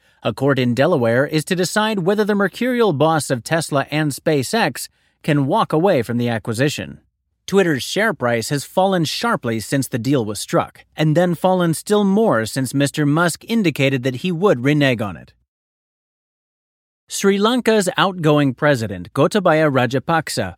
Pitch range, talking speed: 130-180 Hz, 155 wpm